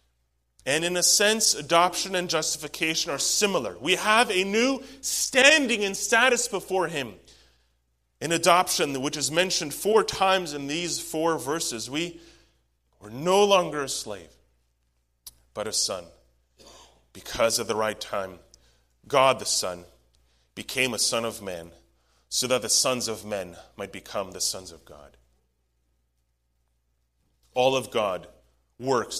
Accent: American